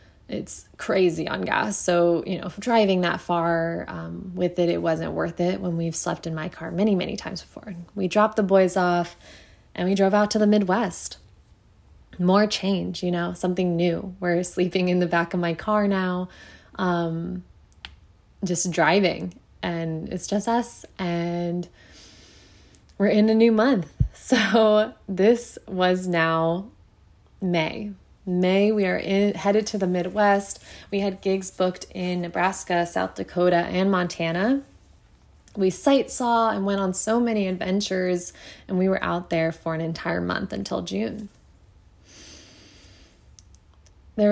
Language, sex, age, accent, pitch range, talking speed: English, female, 20-39, American, 170-195 Hz, 150 wpm